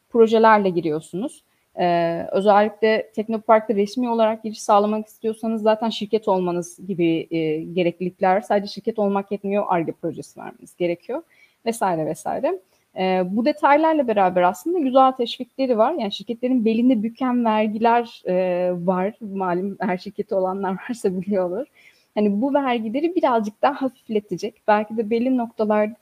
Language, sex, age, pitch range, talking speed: Turkish, female, 30-49, 185-230 Hz, 135 wpm